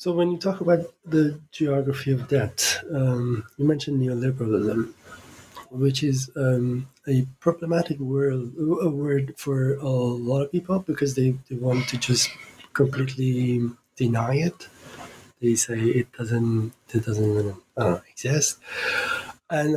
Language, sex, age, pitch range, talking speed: English, male, 20-39, 120-145 Hz, 135 wpm